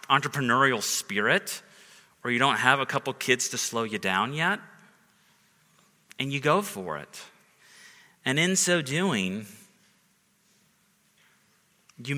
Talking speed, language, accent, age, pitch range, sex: 120 wpm, English, American, 30-49, 130-195 Hz, male